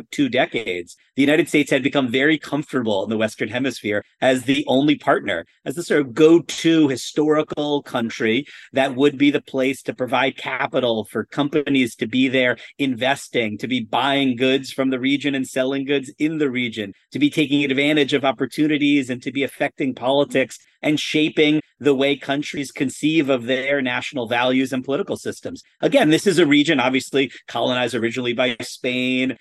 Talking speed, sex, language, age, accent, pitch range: 175 wpm, male, English, 40-59, American, 125-150 Hz